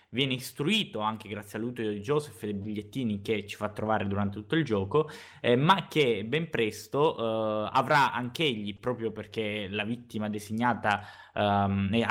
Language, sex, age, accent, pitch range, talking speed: Italian, male, 20-39, native, 105-135 Hz, 165 wpm